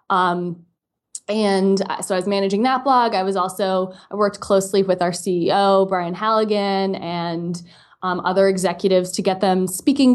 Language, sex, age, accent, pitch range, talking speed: English, female, 20-39, American, 175-200 Hz, 160 wpm